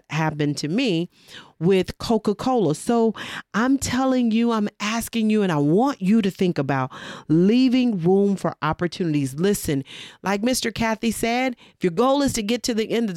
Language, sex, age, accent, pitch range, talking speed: English, female, 40-59, American, 175-235 Hz, 175 wpm